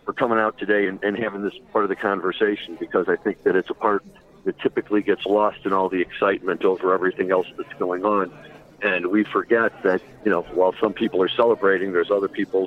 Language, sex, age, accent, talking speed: English, male, 50-69, American, 225 wpm